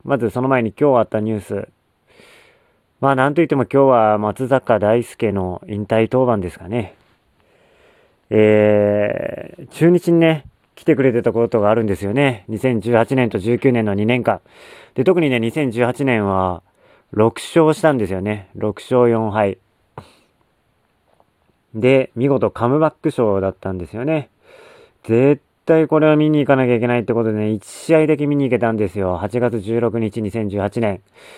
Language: Japanese